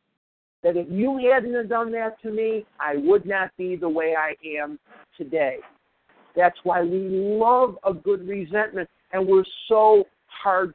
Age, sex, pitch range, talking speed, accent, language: 50-69, male, 160-195 Hz, 160 wpm, American, English